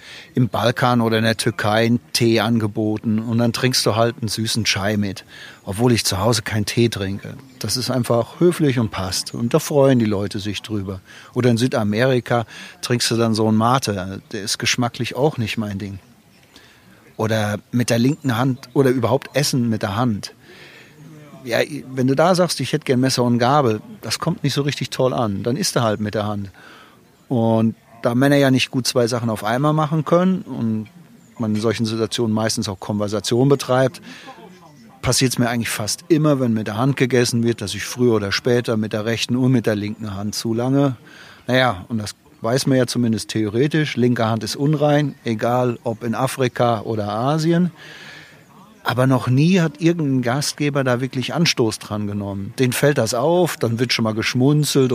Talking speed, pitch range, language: 190 wpm, 110-135 Hz, German